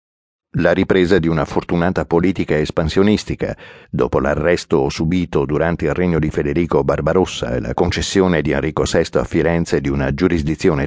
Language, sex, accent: Italian, male, native